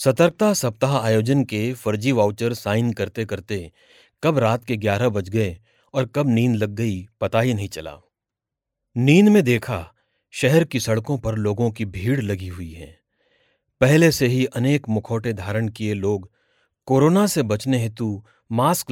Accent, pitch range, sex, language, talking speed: native, 110-155 Hz, male, Hindi, 160 wpm